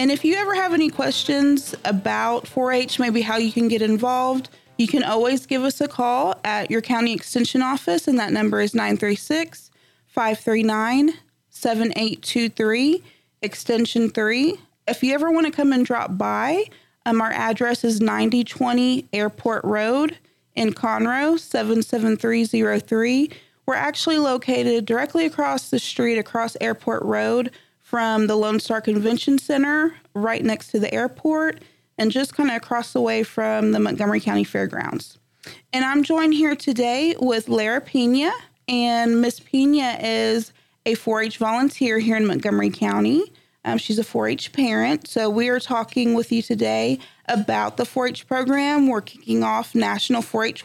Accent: American